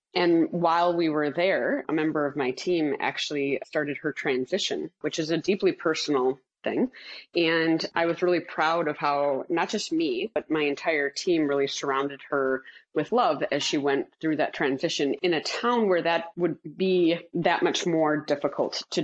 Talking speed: 180 wpm